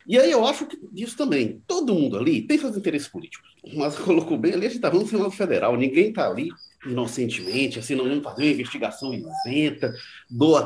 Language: Portuguese